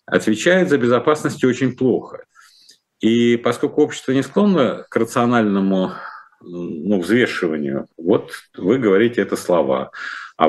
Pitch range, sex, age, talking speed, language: 95-130 Hz, male, 50-69, 115 wpm, Russian